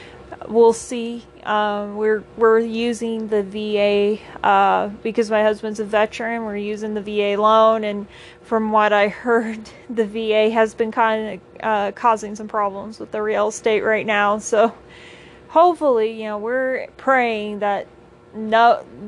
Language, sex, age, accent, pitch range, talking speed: English, female, 30-49, American, 205-230 Hz, 150 wpm